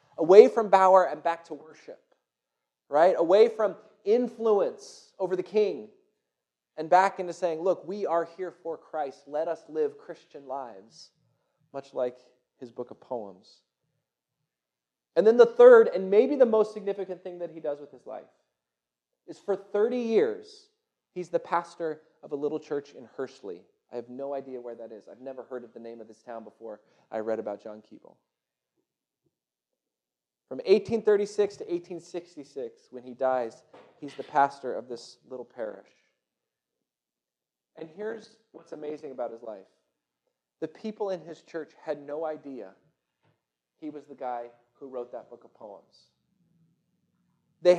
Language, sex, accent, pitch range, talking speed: English, male, American, 145-225 Hz, 160 wpm